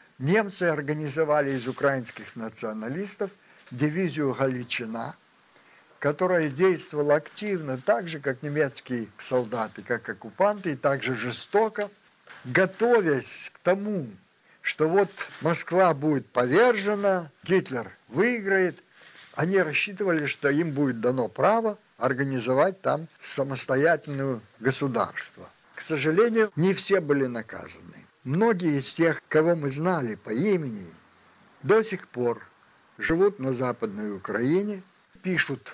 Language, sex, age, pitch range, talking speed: Russian, male, 60-79, 130-180 Hz, 105 wpm